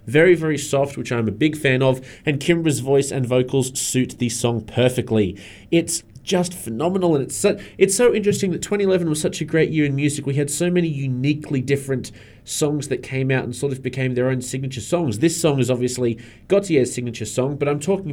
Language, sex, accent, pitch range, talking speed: English, male, Australian, 125-160 Hz, 210 wpm